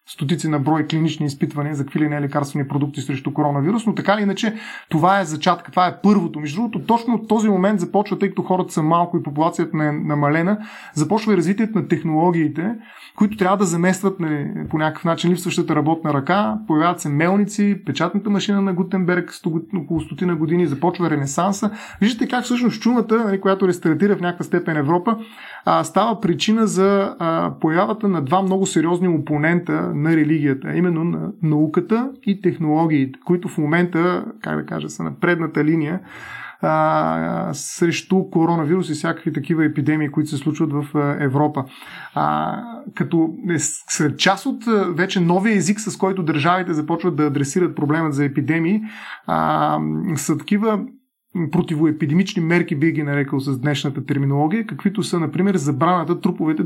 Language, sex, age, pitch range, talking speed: Bulgarian, male, 30-49, 155-195 Hz, 155 wpm